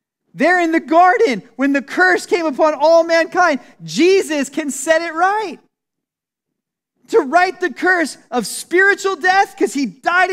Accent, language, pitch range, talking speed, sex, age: American, English, 215-360 Hz, 150 wpm, male, 30-49